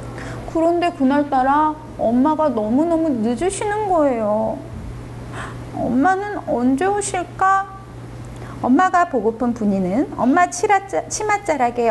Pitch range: 220-355 Hz